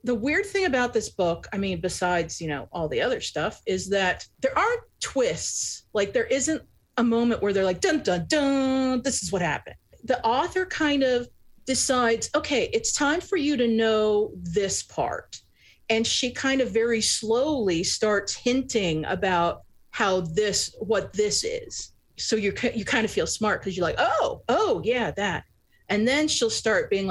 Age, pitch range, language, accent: 40-59, 190-265 Hz, English, American